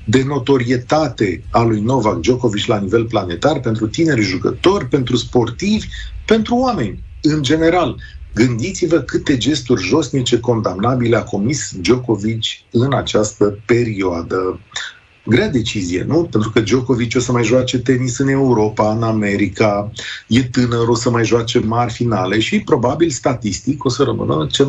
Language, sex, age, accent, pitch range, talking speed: Romanian, male, 40-59, native, 115-155 Hz, 145 wpm